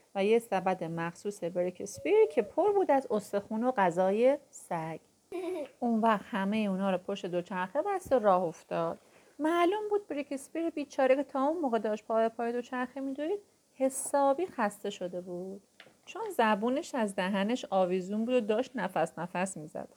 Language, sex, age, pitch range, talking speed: Persian, female, 30-49, 195-315 Hz, 155 wpm